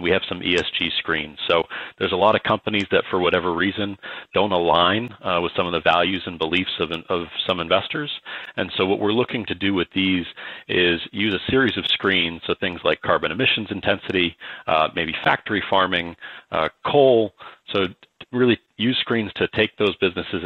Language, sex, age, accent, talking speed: English, male, 40-59, American, 190 wpm